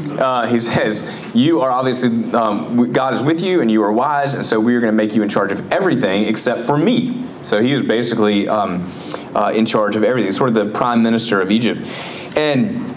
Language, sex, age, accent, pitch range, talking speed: English, male, 30-49, American, 110-135 Hz, 220 wpm